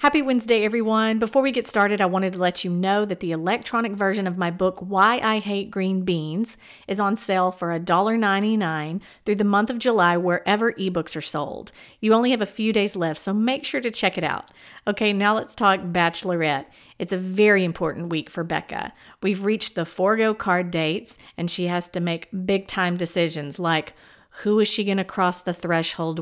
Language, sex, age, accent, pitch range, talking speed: English, female, 50-69, American, 175-215 Hz, 200 wpm